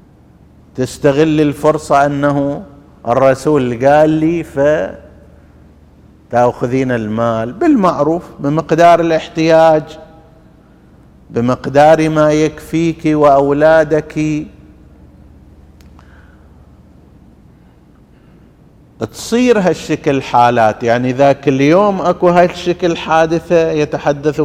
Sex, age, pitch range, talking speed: male, 50-69, 130-165 Hz, 60 wpm